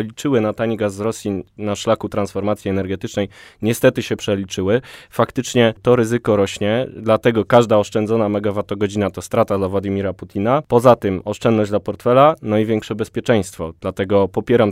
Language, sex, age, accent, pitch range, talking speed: Polish, male, 20-39, native, 100-120 Hz, 150 wpm